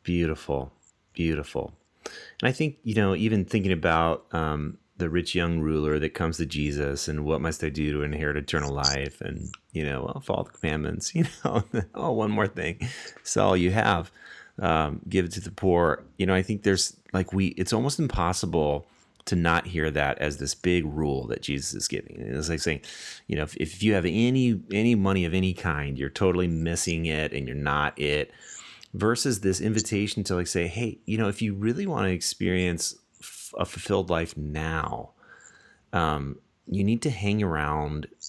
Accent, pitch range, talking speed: American, 80-100 Hz, 190 wpm